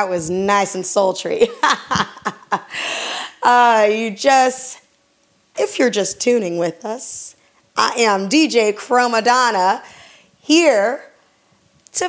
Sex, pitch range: female, 195-250 Hz